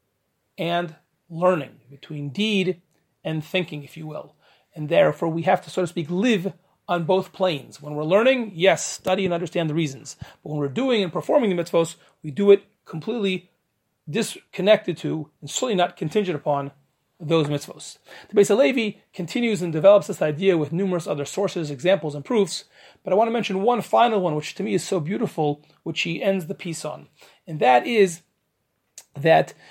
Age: 30-49